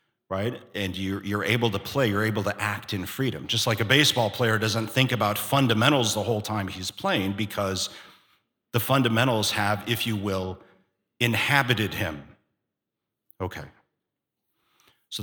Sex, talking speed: male, 150 wpm